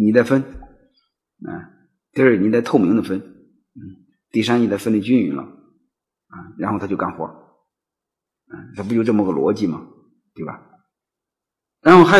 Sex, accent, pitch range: male, native, 105-160 Hz